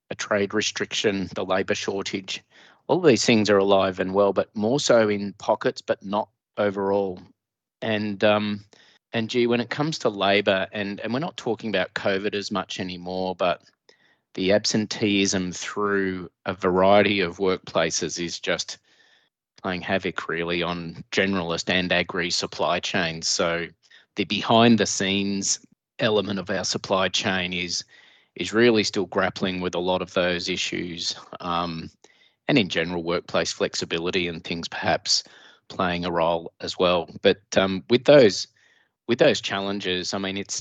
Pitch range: 90-100 Hz